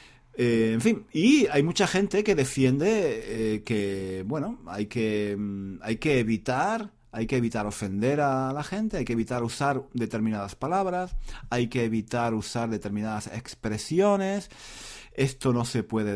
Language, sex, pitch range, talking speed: Spanish, male, 110-135 Hz, 150 wpm